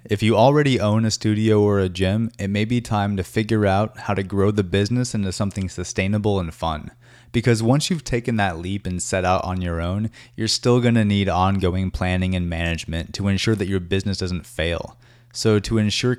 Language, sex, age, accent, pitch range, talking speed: English, male, 30-49, American, 90-115 Hz, 210 wpm